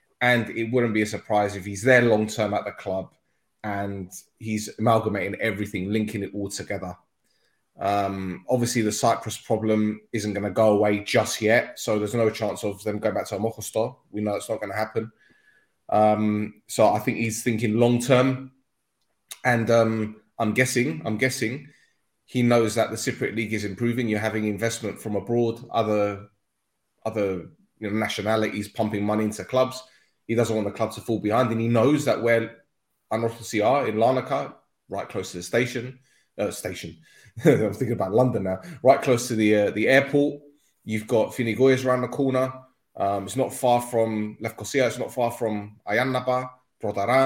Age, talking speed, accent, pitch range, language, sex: 20-39, 175 wpm, British, 105-130 Hz, English, male